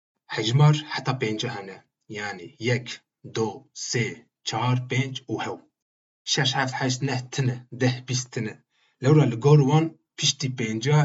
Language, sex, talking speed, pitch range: Turkish, male, 125 wpm, 115-135 Hz